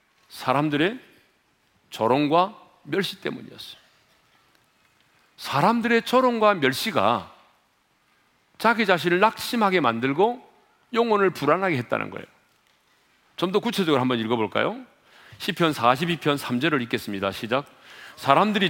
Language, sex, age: Korean, male, 40-59